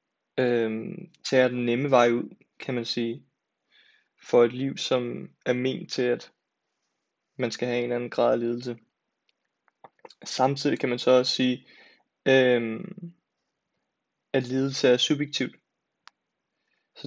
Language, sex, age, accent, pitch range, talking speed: Danish, male, 20-39, native, 120-140 Hz, 135 wpm